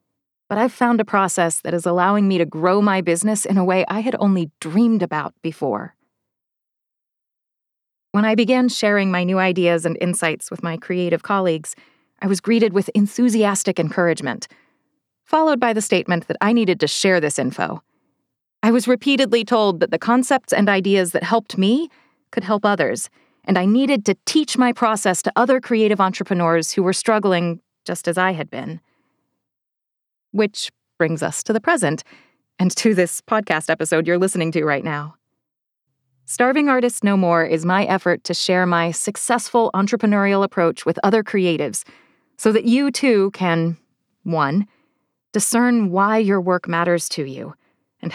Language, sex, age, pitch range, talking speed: English, female, 30-49, 170-220 Hz, 165 wpm